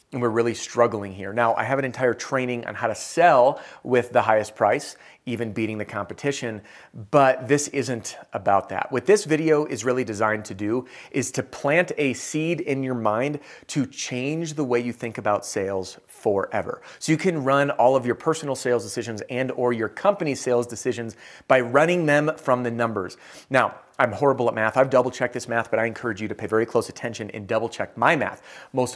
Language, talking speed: English, 205 wpm